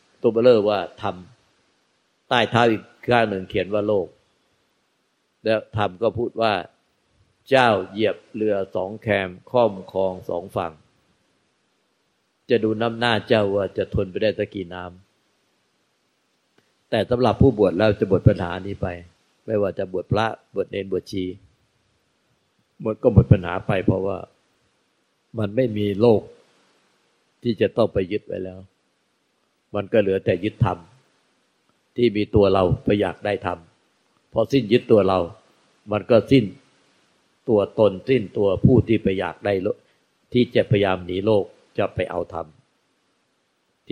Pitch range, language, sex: 95-115 Hz, Thai, male